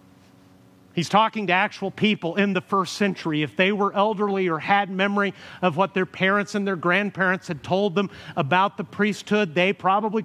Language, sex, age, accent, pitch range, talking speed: English, male, 50-69, American, 165-210 Hz, 180 wpm